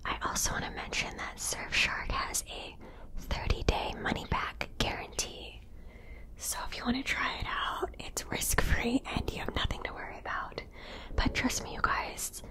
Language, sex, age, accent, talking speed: English, female, 20-39, American, 165 wpm